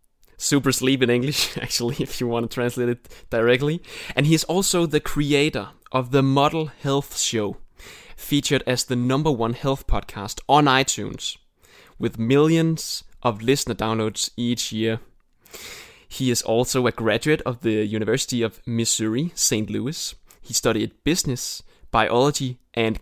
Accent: native